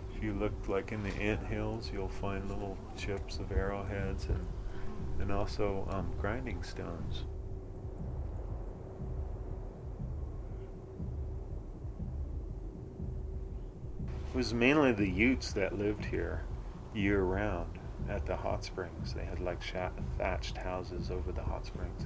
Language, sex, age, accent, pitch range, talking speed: English, male, 40-59, American, 85-100 Hz, 110 wpm